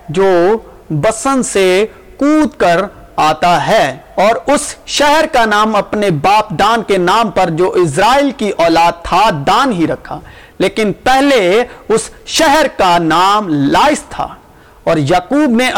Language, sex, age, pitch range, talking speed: Urdu, male, 40-59, 155-230 Hz, 140 wpm